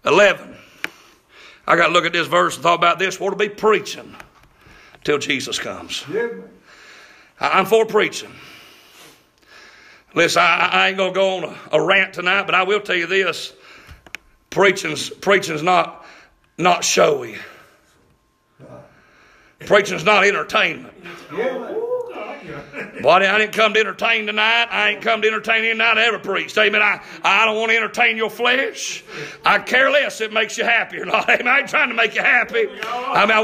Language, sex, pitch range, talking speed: English, male, 210-250 Hz, 170 wpm